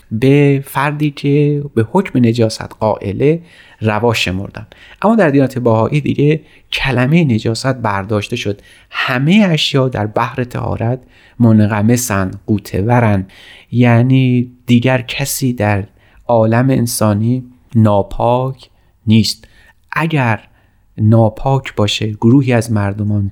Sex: male